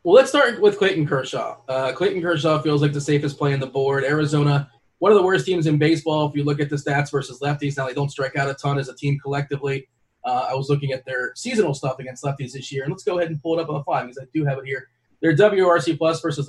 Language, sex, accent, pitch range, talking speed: English, male, American, 135-155 Hz, 280 wpm